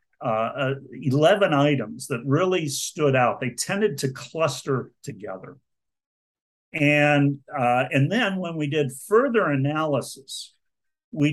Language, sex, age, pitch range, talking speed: English, male, 50-69, 135-170 Hz, 120 wpm